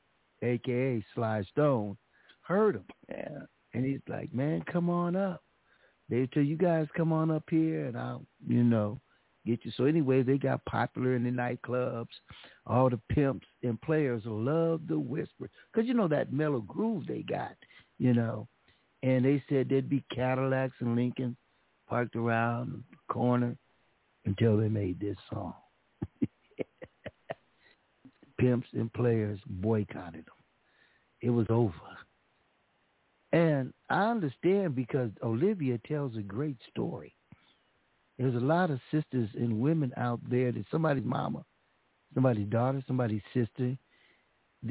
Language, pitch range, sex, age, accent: Japanese, 115-145 Hz, male, 60-79, American